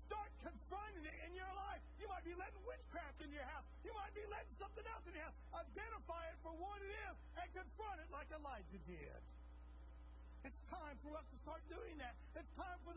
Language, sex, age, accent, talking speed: English, male, 40-59, American, 215 wpm